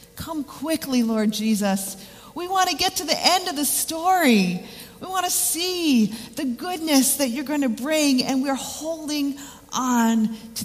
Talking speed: 170 wpm